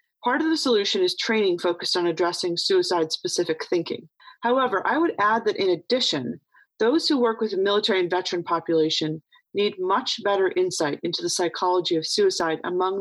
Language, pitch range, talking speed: English, 170-225 Hz, 170 wpm